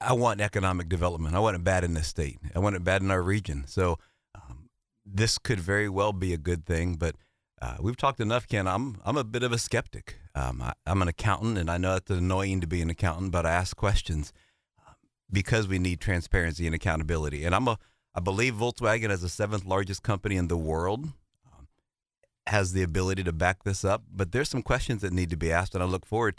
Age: 30-49